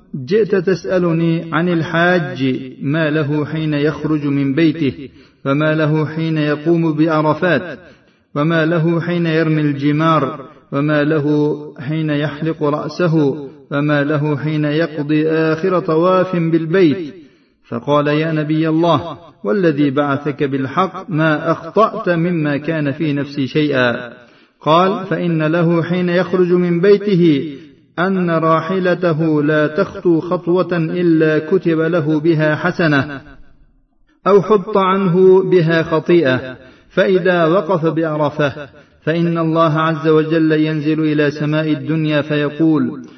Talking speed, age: 110 wpm, 40-59